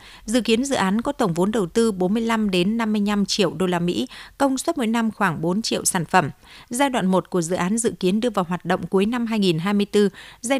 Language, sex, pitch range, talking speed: Vietnamese, female, 180-225 Hz, 230 wpm